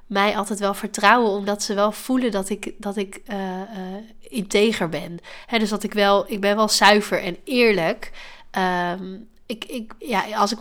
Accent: Dutch